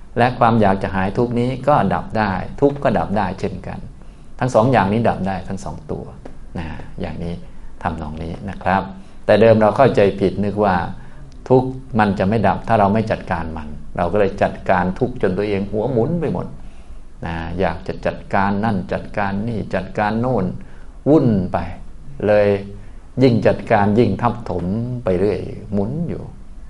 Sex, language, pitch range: male, Thai, 90-110 Hz